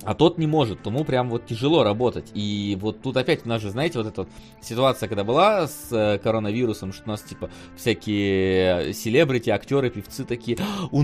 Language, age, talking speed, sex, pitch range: Russian, 30-49, 190 wpm, male, 105-150 Hz